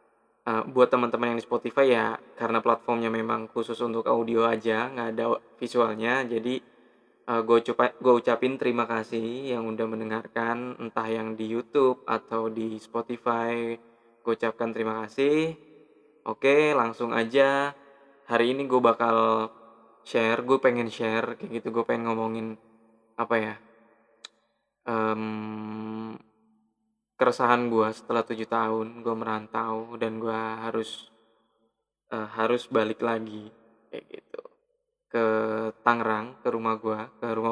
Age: 20-39